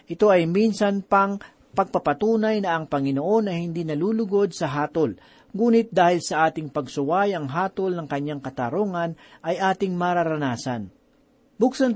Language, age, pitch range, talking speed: Filipino, 40-59, 150-200 Hz, 135 wpm